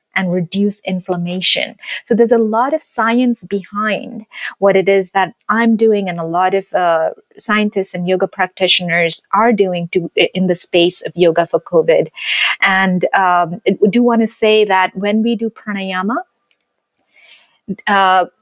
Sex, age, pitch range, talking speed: female, 30-49, 185-230 Hz, 155 wpm